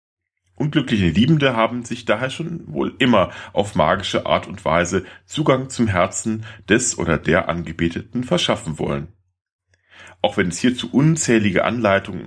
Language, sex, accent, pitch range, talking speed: German, male, German, 85-115 Hz, 135 wpm